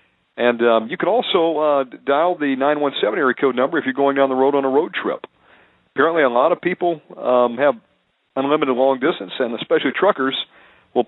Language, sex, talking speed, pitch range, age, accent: English, male, 195 wpm, 115-145 Hz, 50-69, American